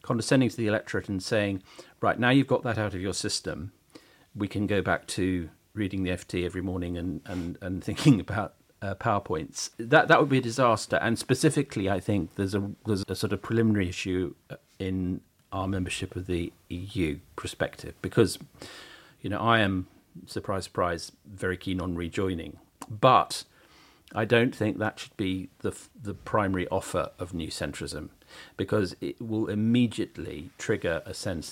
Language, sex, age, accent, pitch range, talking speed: English, male, 40-59, British, 90-115 Hz, 170 wpm